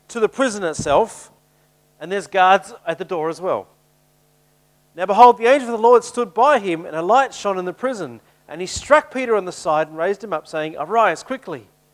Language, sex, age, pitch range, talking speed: English, male, 40-59, 155-230 Hz, 215 wpm